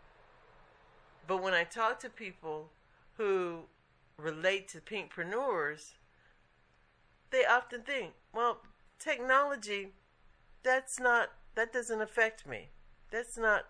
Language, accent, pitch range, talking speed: English, American, 160-230 Hz, 100 wpm